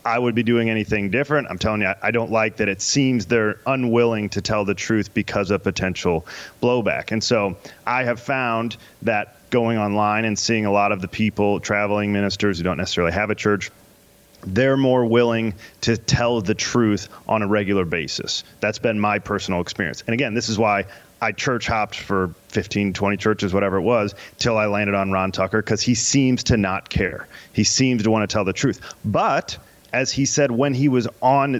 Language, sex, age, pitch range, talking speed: English, male, 30-49, 105-125 Hz, 205 wpm